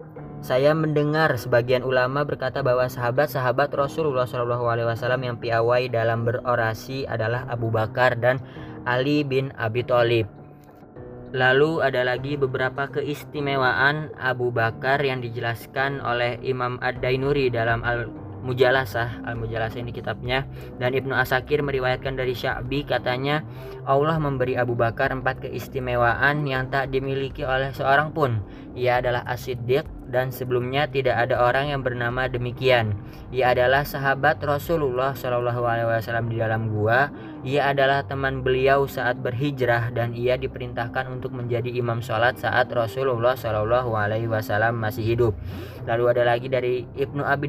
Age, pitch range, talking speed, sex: 20-39, 120-135 Hz, 135 wpm, female